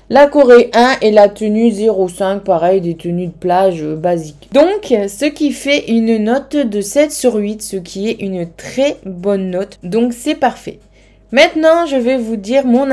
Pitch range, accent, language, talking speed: 210-275 Hz, French, French, 185 wpm